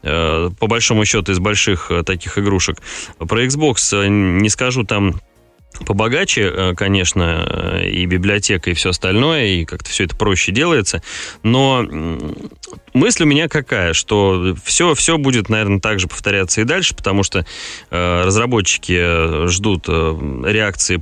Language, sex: Russian, male